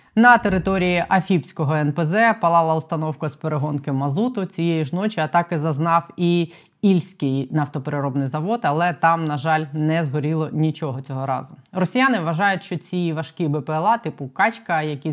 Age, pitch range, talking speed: 20-39, 155-190 Hz, 145 wpm